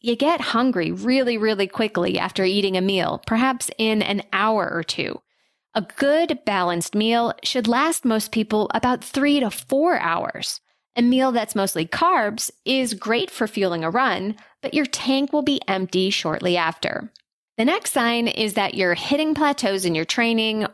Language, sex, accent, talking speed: English, female, American, 170 wpm